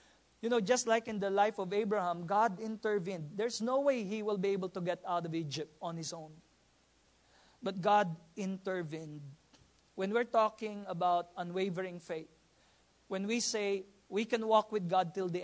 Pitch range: 165-220 Hz